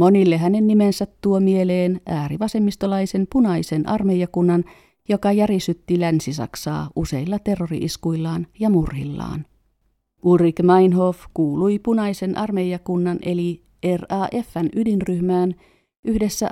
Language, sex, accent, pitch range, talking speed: Finnish, female, native, 165-200 Hz, 85 wpm